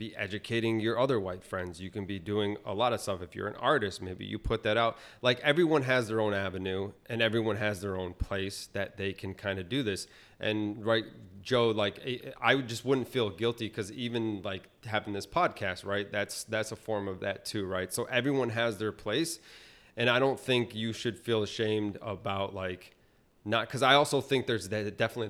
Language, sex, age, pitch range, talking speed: English, male, 30-49, 95-115 Hz, 210 wpm